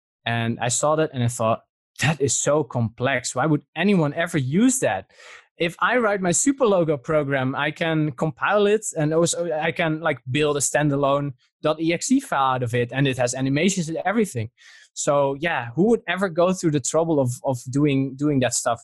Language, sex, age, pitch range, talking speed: English, male, 20-39, 120-155 Hz, 200 wpm